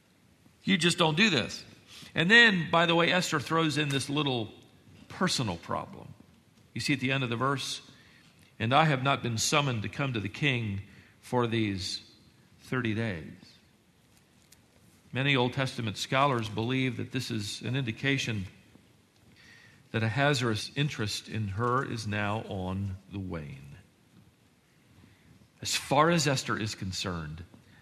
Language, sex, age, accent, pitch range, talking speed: English, male, 50-69, American, 110-175 Hz, 145 wpm